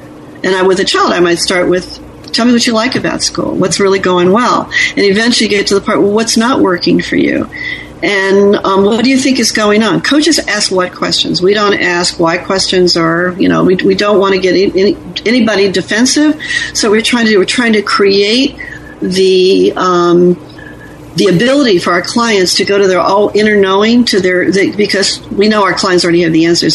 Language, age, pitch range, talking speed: English, 50-69, 185-240 Hz, 220 wpm